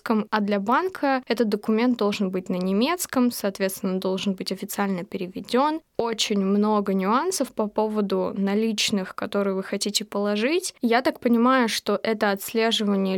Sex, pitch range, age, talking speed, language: female, 200-230 Hz, 20-39, 140 wpm, Russian